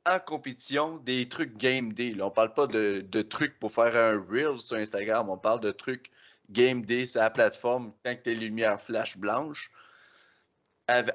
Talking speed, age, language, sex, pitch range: 185 wpm, 30-49, French, male, 115-150 Hz